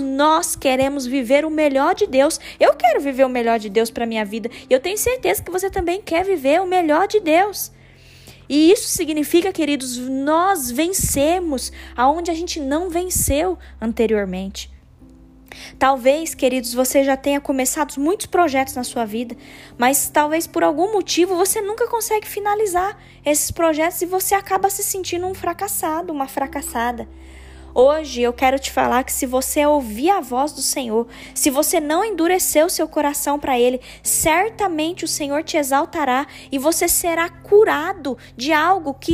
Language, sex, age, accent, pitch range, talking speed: Portuguese, female, 10-29, Brazilian, 255-335 Hz, 165 wpm